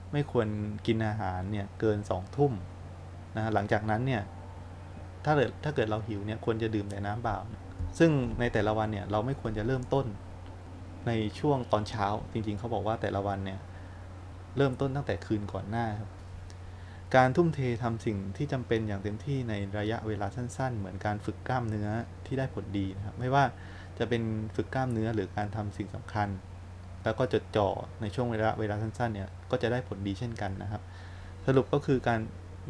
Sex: male